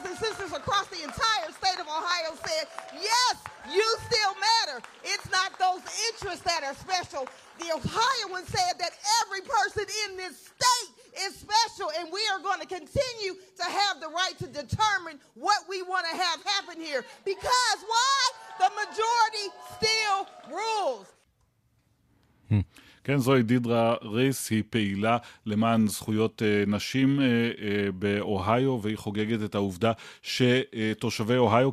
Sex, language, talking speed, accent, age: female, Hebrew, 140 wpm, American, 40-59